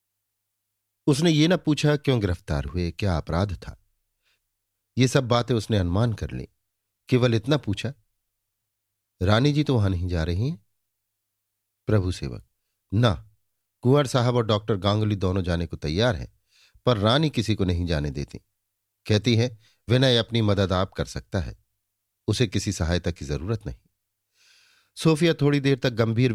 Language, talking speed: Hindi, 155 wpm